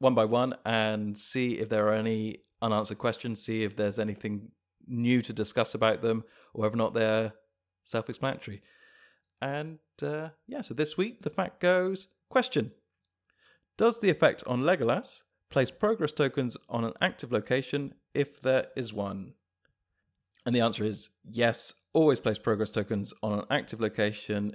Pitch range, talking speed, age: 105-135 Hz, 155 wpm, 30-49